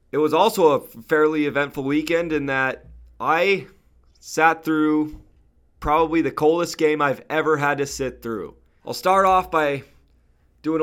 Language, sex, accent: English, male, American